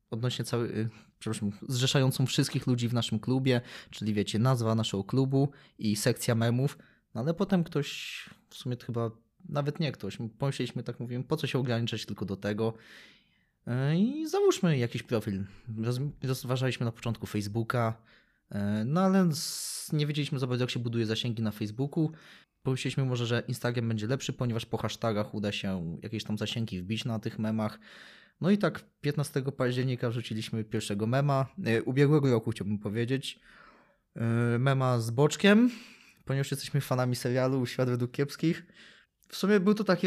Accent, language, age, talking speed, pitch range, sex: native, Polish, 20-39, 155 wpm, 115-140 Hz, male